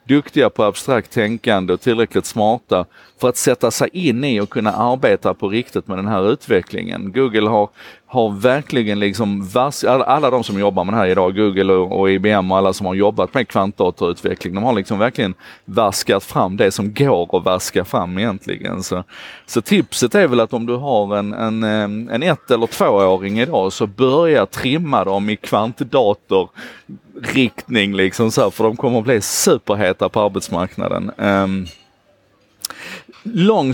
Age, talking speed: 30-49, 165 wpm